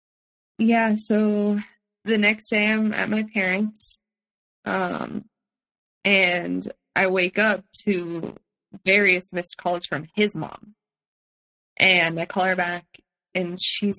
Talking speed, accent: 120 wpm, American